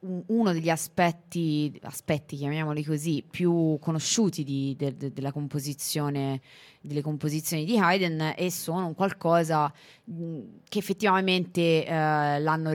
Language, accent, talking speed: Italian, native, 115 wpm